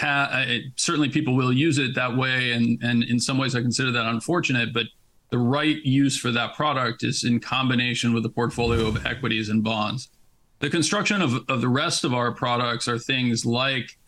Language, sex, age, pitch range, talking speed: English, male, 40-59, 120-130 Hz, 190 wpm